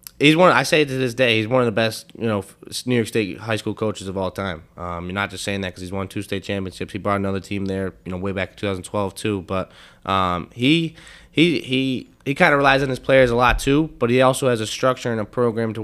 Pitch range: 95-115 Hz